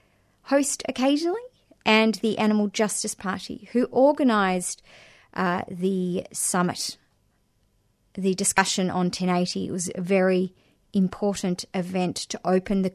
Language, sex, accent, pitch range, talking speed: English, female, Australian, 180-215 Hz, 110 wpm